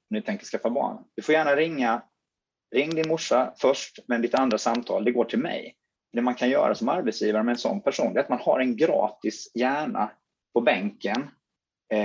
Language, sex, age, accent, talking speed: Swedish, male, 30-49, native, 205 wpm